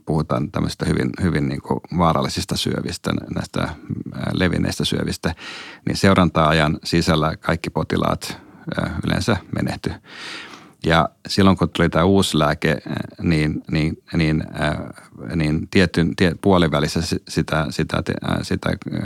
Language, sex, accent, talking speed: Finnish, male, native, 105 wpm